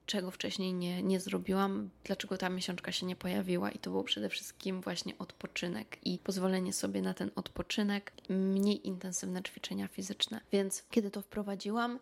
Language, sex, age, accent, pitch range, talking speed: Polish, female, 20-39, native, 185-205 Hz, 160 wpm